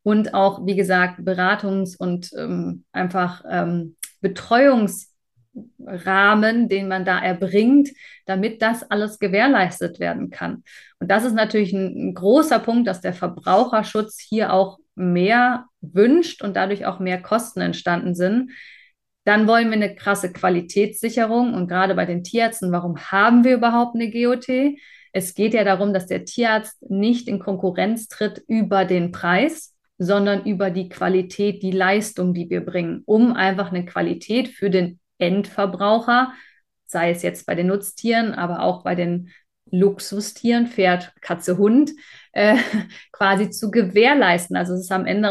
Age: 30-49